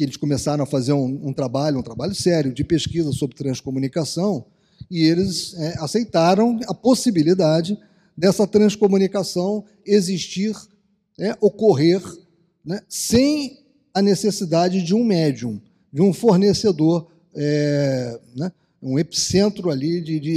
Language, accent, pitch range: Portuguese, Brazilian, 150-200 Hz